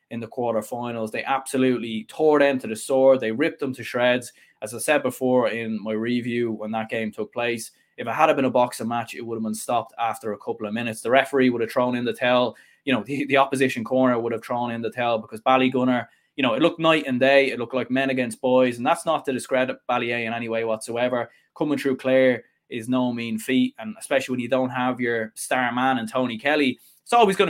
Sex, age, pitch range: male, 20-39, 115-135 Hz